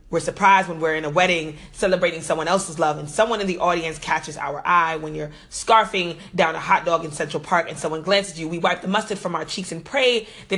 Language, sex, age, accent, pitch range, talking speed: English, female, 30-49, American, 160-195 Hz, 250 wpm